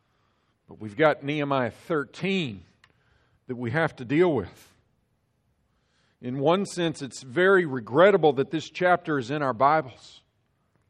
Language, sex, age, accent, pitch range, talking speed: English, male, 50-69, American, 115-155 Hz, 125 wpm